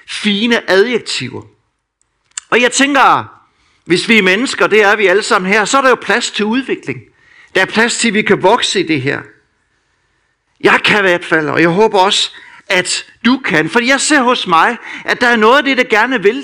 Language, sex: Danish, male